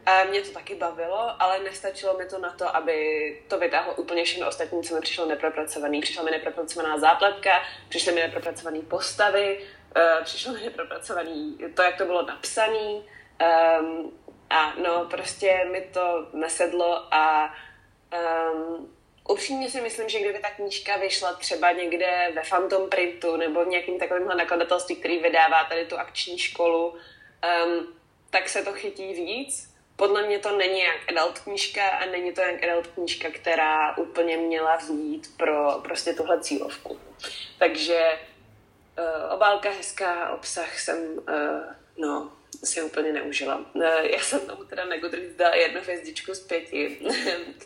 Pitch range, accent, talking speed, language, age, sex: 165-195 Hz, native, 150 wpm, Czech, 20-39, female